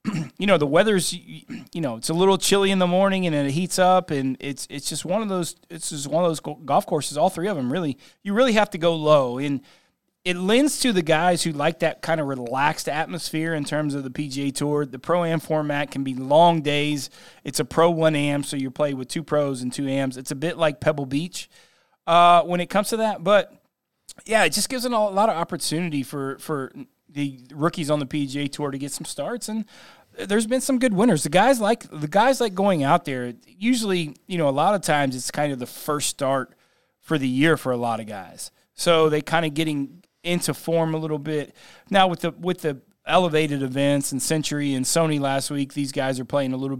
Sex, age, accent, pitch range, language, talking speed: male, 30-49, American, 140-180 Hz, English, 235 wpm